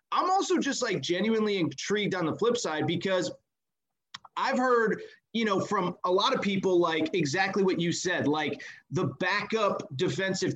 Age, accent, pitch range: 30-49, American, 170-205 Hz